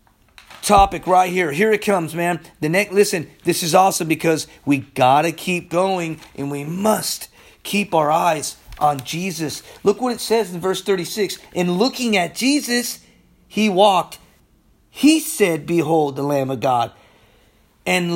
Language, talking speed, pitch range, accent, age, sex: English, 155 wpm, 155-215 Hz, American, 30-49, male